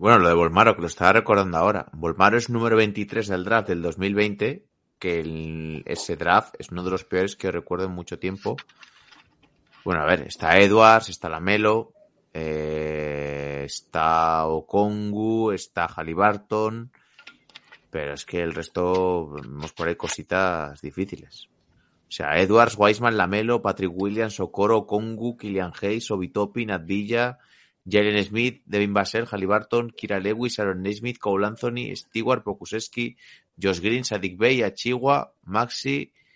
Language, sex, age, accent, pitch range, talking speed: Spanish, male, 30-49, Spanish, 85-110 Hz, 140 wpm